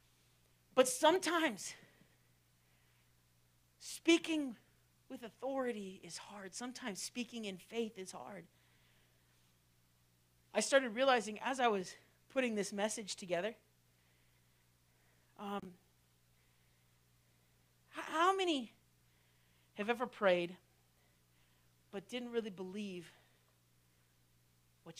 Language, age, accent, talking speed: English, 40-59, American, 80 wpm